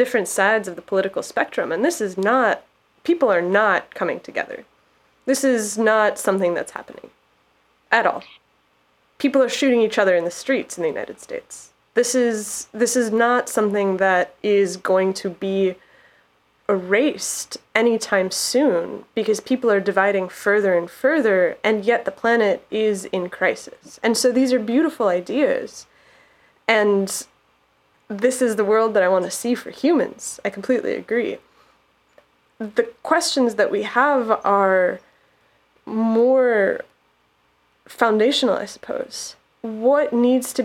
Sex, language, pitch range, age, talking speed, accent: female, English, 195-245 Hz, 20-39, 145 wpm, American